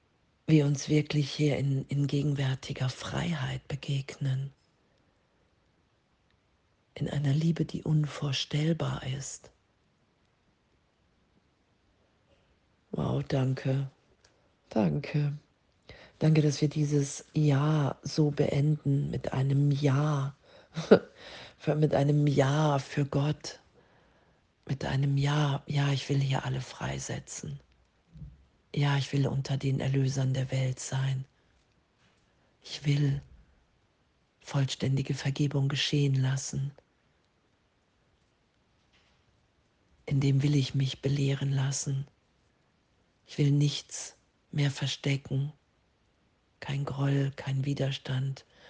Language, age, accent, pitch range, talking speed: German, 40-59, German, 130-145 Hz, 90 wpm